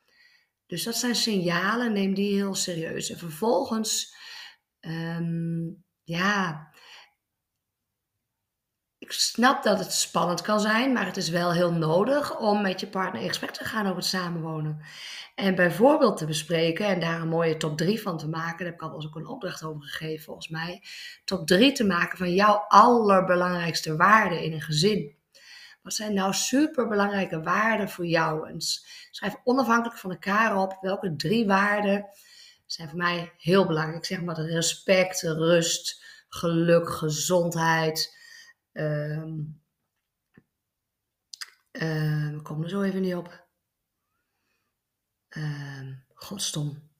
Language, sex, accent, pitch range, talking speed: Dutch, female, Dutch, 165-210 Hz, 135 wpm